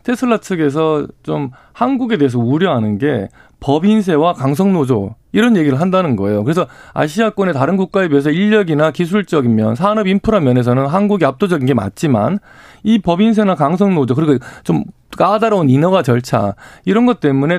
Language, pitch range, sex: Korean, 130-210 Hz, male